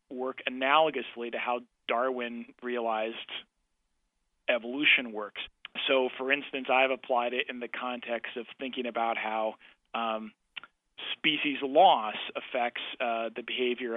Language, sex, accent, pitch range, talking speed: English, male, American, 115-130 Hz, 120 wpm